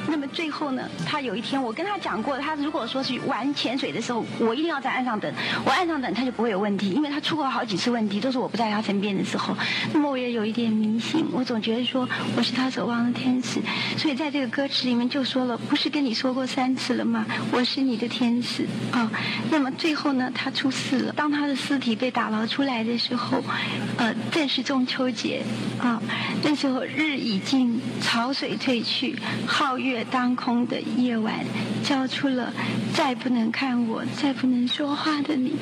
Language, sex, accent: Chinese, female, native